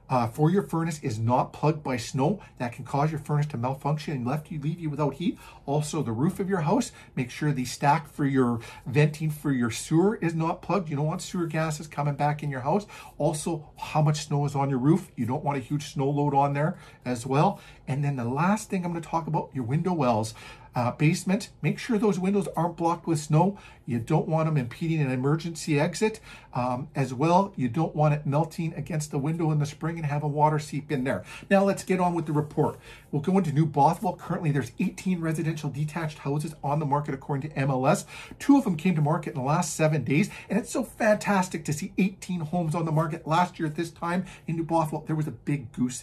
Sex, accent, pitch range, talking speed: male, American, 145-170 Hz, 235 wpm